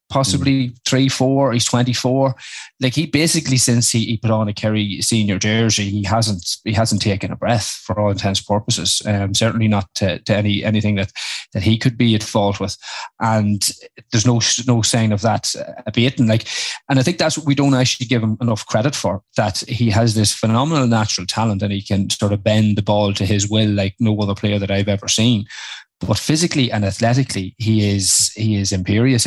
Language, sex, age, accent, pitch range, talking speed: English, male, 20-39, Irish, 105-120 Hz, 210 wpm